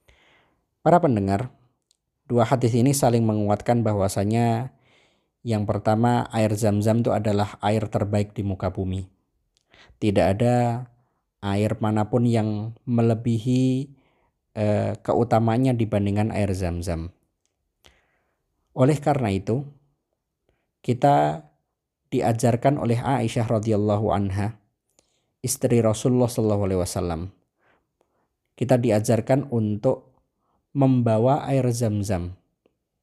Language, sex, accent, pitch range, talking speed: Indonesian, male, native, 100-120 Hz, 90 wpm